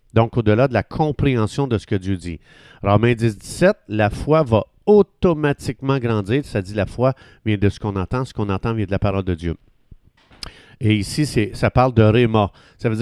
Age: 50-69